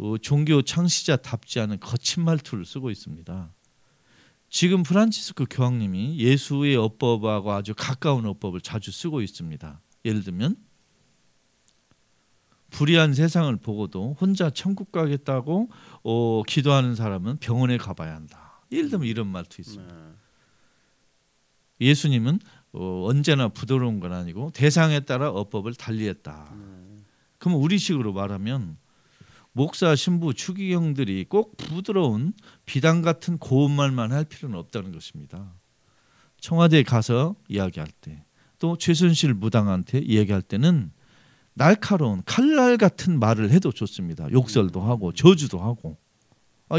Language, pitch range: Korean, 100-160 Hz